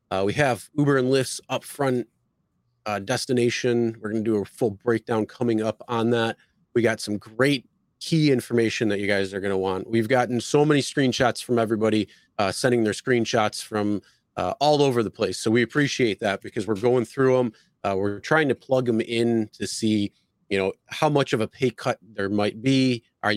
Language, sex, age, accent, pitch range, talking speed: English, male, 30-49, American, 100-125 Hz, 205 wpm